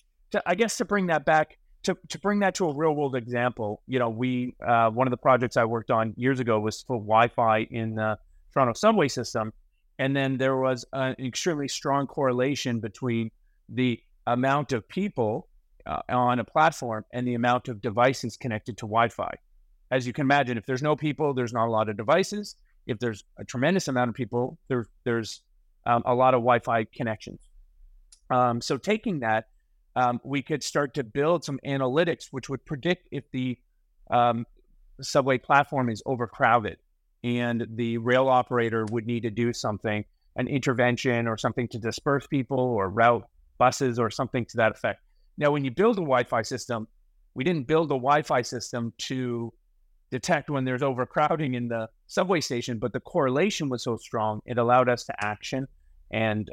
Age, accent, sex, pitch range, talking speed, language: 30-49, American, male, 115-140 Hz, 185 wpm, English